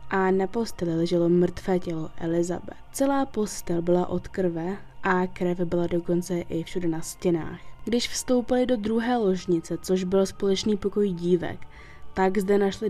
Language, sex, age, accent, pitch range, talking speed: Czech, female, 20-39, native, 180-220 Hz, 155 wpm